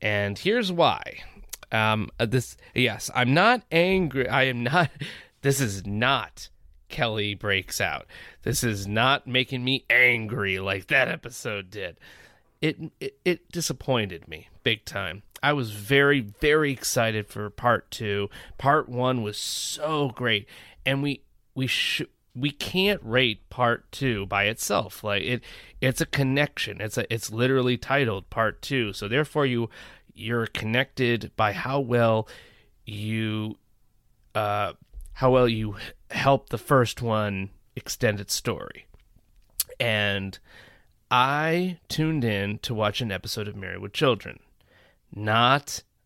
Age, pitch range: 30-49, 105-135 Hz